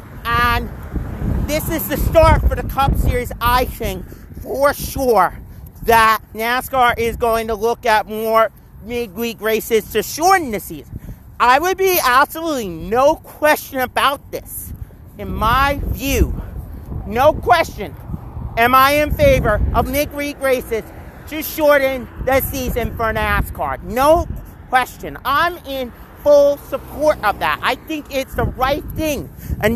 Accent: American